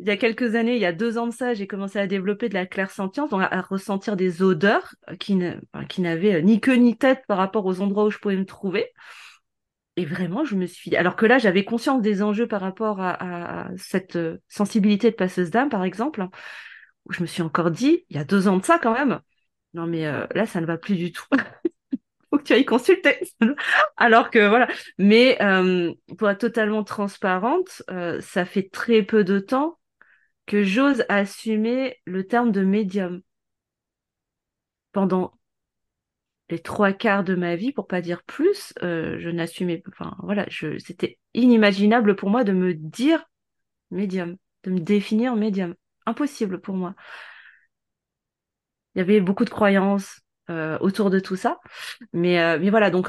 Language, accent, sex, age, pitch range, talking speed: French, French, female, 30-49, 185-230 Hz, 185 wpm